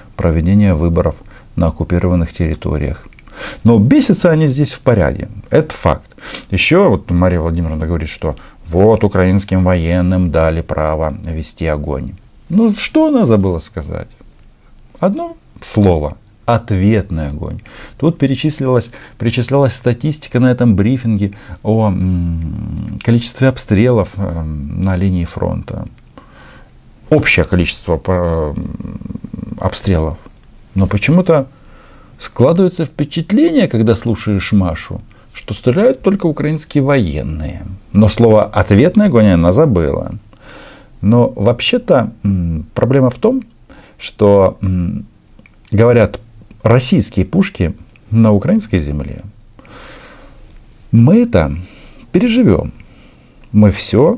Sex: male